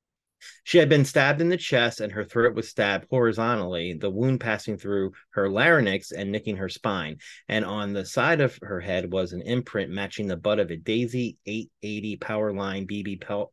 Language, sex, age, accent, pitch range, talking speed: English, male, 30-49, American, 100-130 Hz, 190 wpm